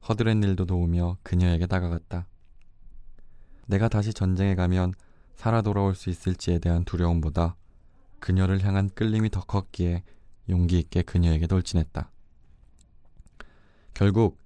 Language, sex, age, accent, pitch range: Korean, male, 20-39, native, 85-100 Hz